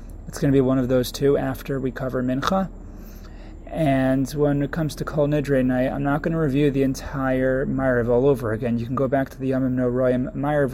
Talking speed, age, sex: 230 wpm, 20-39, male